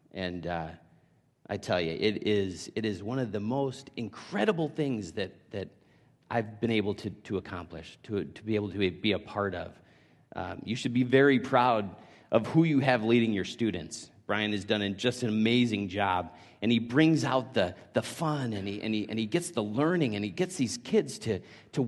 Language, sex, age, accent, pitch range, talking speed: English, male, 40-59, American, 105-135 Hz, 205 wpm